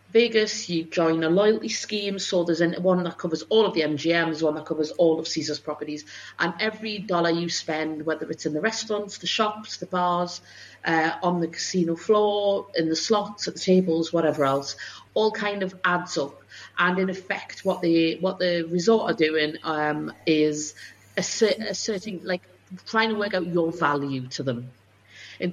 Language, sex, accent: English, female, British